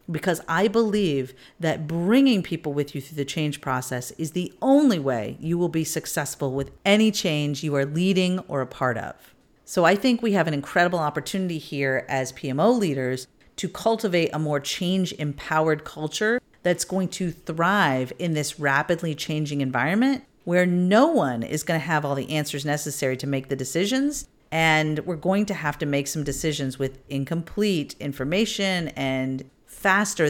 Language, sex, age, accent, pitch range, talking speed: English, female, 40-59, American, 145-190 Hz, 170 wpm